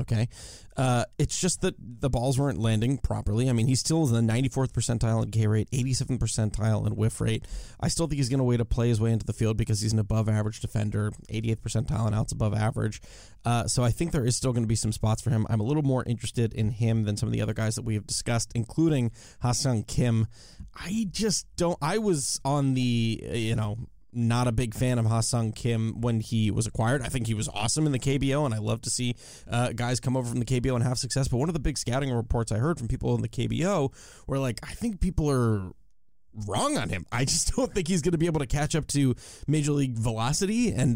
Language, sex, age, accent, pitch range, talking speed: English, male, 20-39, American, 115-145 Hz, 250 wpm